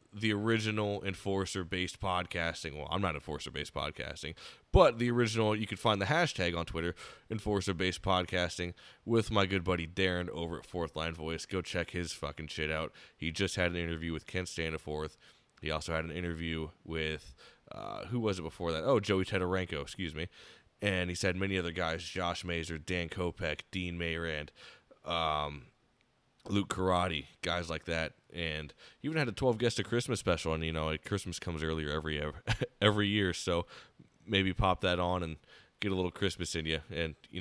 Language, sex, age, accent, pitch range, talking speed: English, male, 20-39, American, 80-95 Hz, 180 wpm